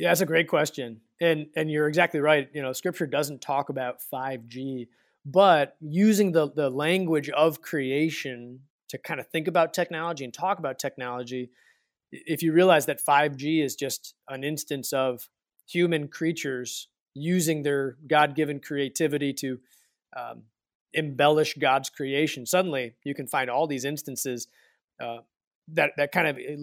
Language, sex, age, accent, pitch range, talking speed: English, male, 30-49, American, 135-165 Hz, 155 wpm